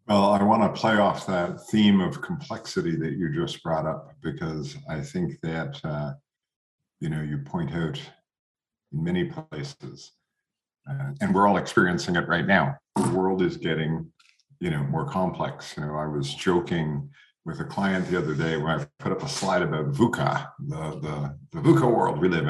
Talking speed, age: 185 wpm, 50-69